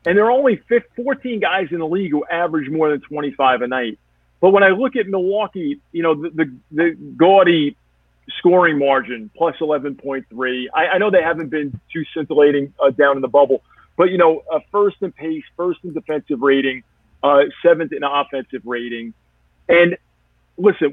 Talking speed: 185 wpm